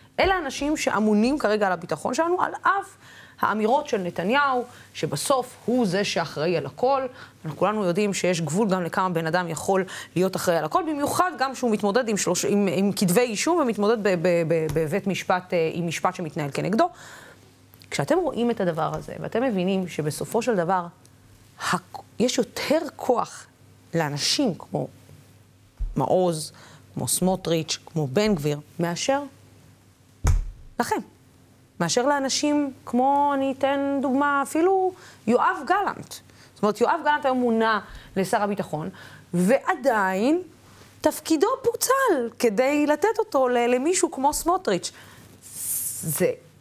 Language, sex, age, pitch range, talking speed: Hebrew, female, 30-49, 175-285 Hz, 135 wpm